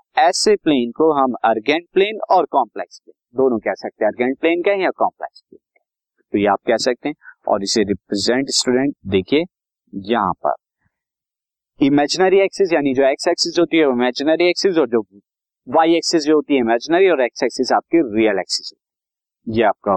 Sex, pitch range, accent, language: male, 125-165 Hz, native, Hindi